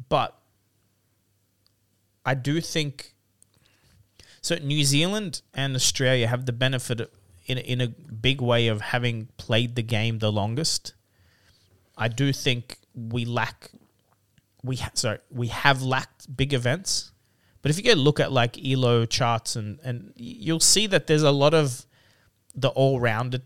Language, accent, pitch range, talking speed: English, Australian, 110-135 Hz, 155 wpm